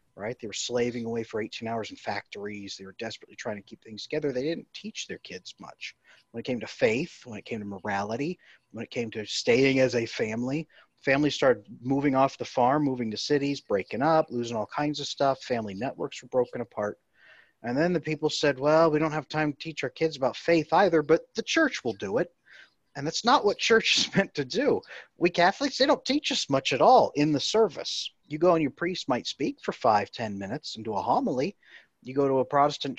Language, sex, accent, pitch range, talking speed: English, male, American, 115-160 Hz, 230 wpm